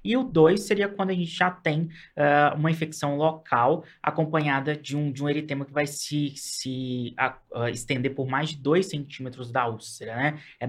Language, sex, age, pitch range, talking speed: Portuguese, male, 20-39, 125-150 Hz, 175 wpm